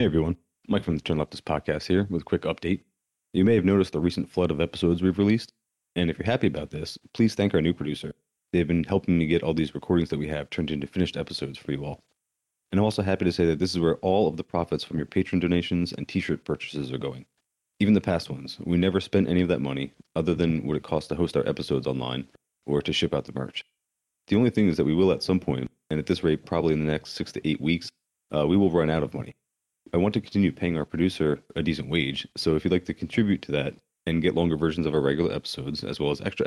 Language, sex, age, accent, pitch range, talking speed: English, male, 30-49, American, 75-95 Hz, 265 wpm